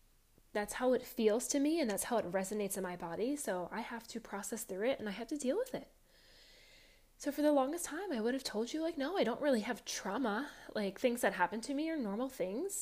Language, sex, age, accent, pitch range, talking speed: English, female, 10-29, American, 185-250 Hz, 255 wpm